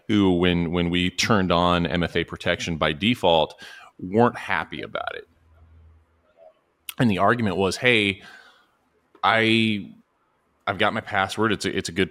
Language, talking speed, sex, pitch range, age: English, 145 wpm, male, 80-95 Hz, 30-49